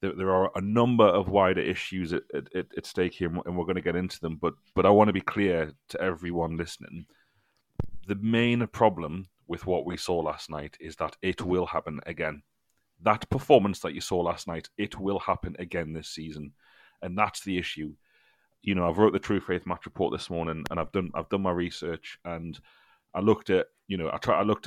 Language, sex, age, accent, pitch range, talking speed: English, male, 30-49, British, 85-100 Hz, 210 wpm